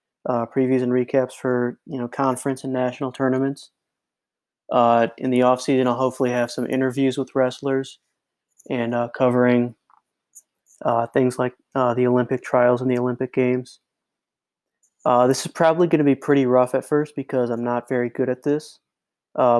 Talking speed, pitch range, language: 170 wpm, 120-130 Hz, English